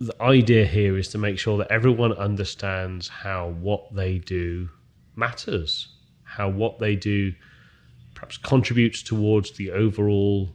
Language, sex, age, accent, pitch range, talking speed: English, male, 30-49, British, 90-110 Hz, 135 wpm